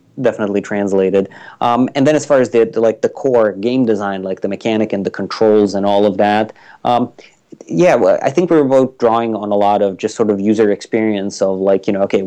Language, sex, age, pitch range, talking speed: English, male, 30-49, 100-115 Hz, 220 wpm